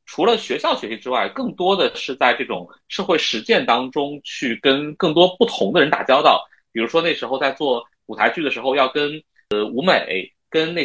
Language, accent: Chinese, native